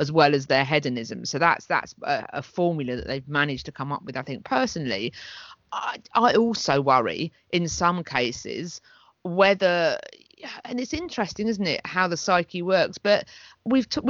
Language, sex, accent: English, female, British